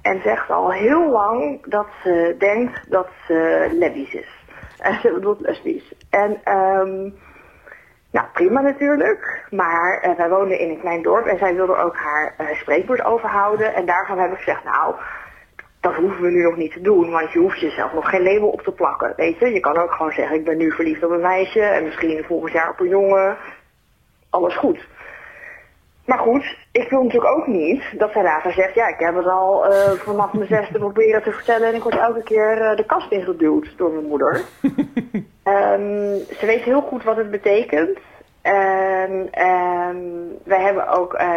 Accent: Dutch